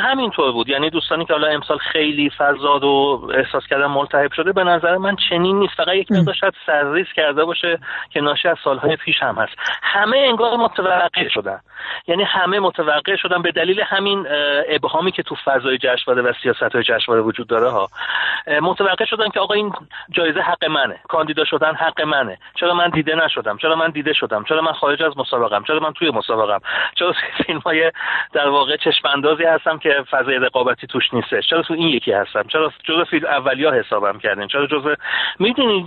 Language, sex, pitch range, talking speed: Persian, male, 140-180 Hz, 180 wpm